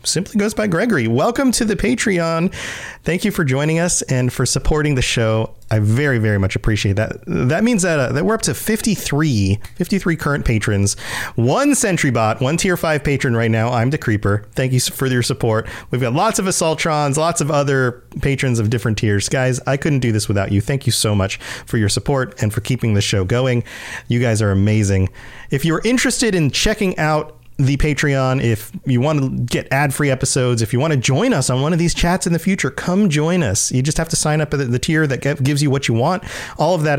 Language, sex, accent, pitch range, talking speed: English, male, American, 120-170 Hz, 225 wpm